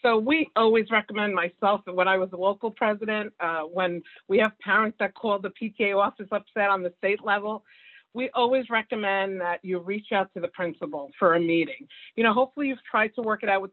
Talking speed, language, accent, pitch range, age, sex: 220 wpm, English, American, 190-235 Hz, 50-69, female